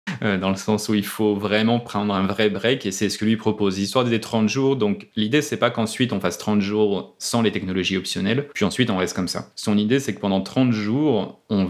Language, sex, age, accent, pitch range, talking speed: French, male, 30-49, French, 95-115 Hz, 250 wpm